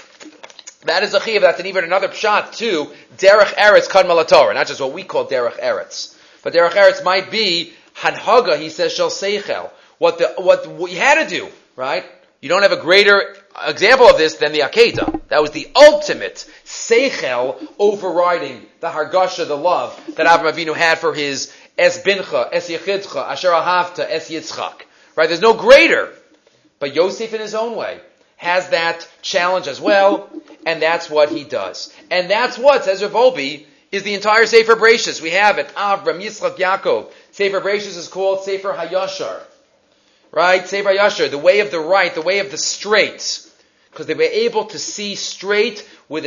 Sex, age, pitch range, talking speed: male, 30-49, 170-250 Hz, 175 wpm